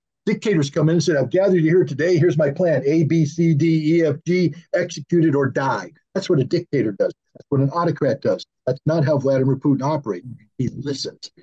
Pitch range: 130-170 Hz